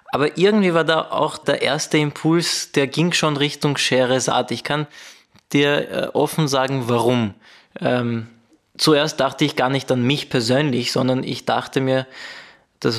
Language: German